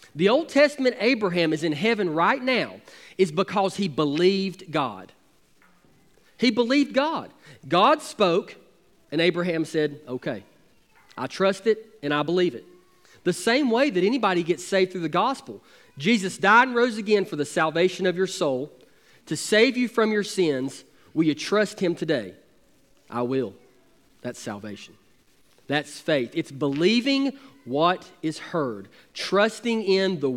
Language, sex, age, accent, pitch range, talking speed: English, male, 40-59, American, 145-200 Hz, 150 wpm